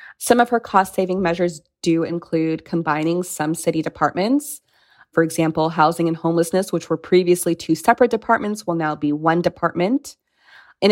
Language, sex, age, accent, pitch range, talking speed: English, female, 20-39, American, 165-190 Hz, 155 wpm